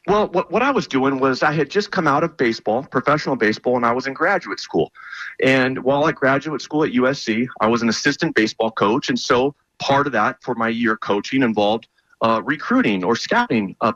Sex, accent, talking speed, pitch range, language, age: male, American, 215 wpm, 110-145 Hz, English, 40-59